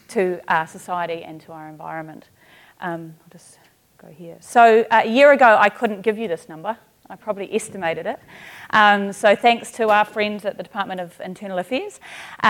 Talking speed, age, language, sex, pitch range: 185 wpm, 30-49, English, female, 180-225 Hz